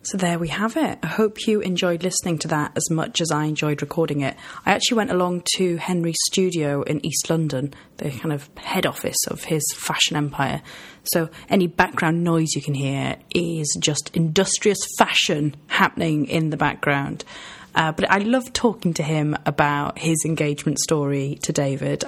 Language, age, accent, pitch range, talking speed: English, 30-49, British, 155-195 Hz, 180 wpm